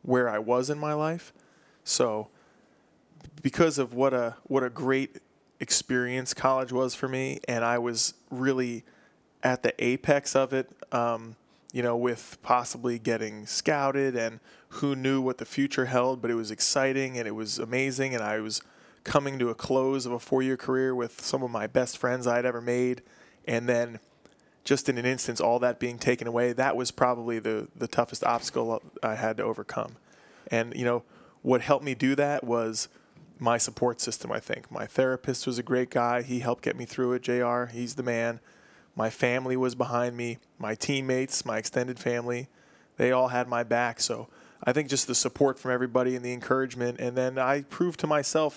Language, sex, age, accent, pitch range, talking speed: English, male, 20-39, American, 120-135 Hz, 190 wpm